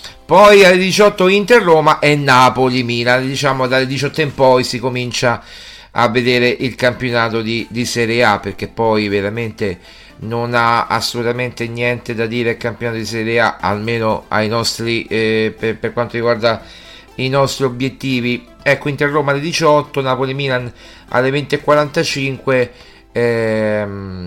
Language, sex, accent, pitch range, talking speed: Italian, male, native, 120-140 Hz, 135 wpm